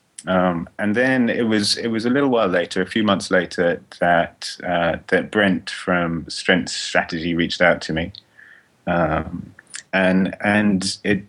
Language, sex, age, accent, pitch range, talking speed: English, male, 30-49, British, 90-95 Hz, 160 wpm